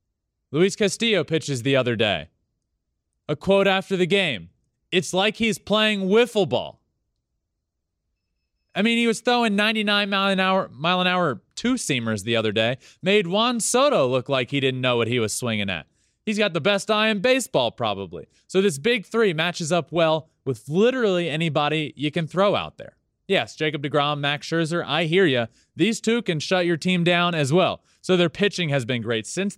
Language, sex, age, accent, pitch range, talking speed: English, male, 20-39, American, 130-190 Hz, 185 wpm